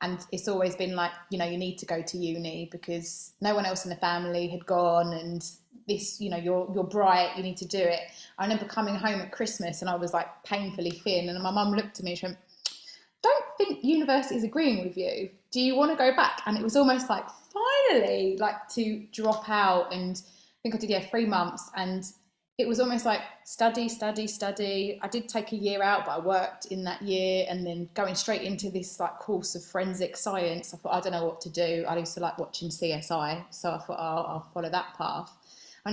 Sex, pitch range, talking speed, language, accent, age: female, 175-210 Hz, 235 wpm, English, British, 20-39